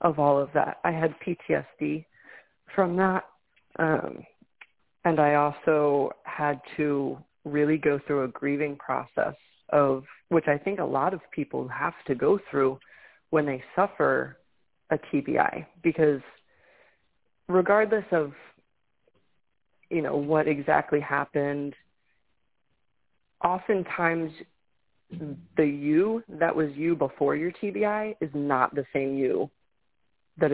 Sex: female